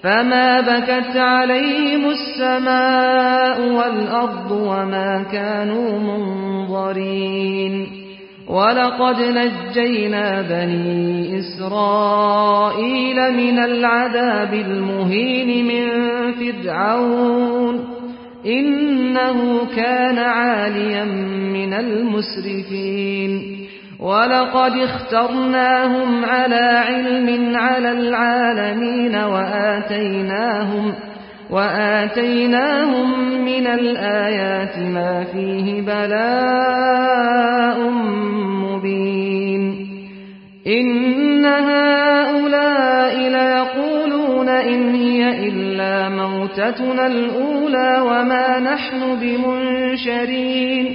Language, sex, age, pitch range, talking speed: Persian, male, 40-59, 205-255 Hz, 55 wpm